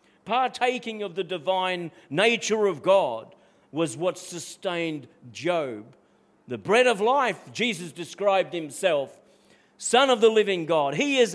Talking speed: 130 wpm